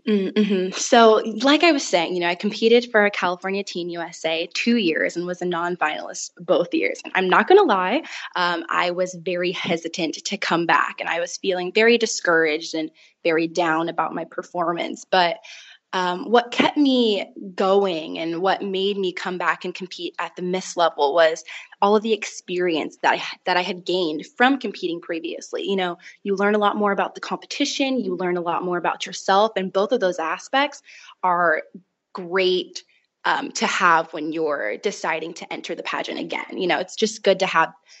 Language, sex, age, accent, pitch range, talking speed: English, female, 20-39, American, 175-210 Hz, 195 wpm